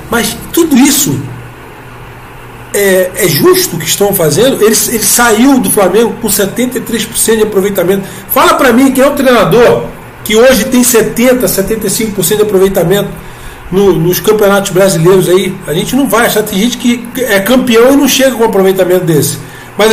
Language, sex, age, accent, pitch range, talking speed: Portuguese, male, 40-59, Brazilian, 185-245 Hz, 165 wpm